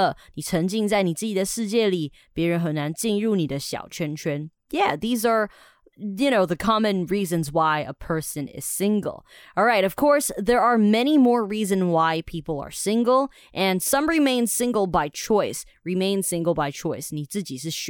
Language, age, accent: Chinese, 20-39, American